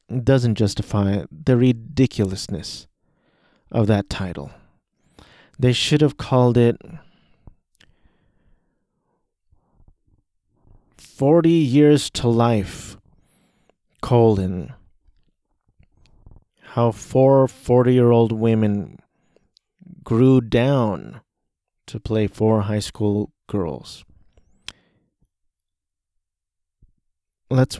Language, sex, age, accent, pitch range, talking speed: English, male, 30-49, American, 105-125 Hz, 65 wpm